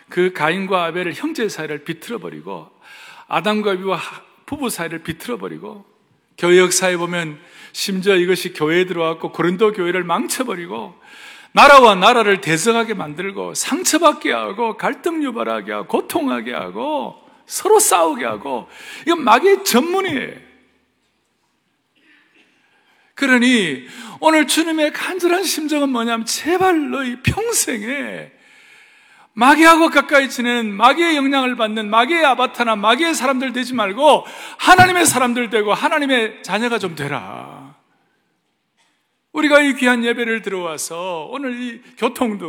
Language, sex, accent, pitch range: Korean, male, native, 205-305 Hz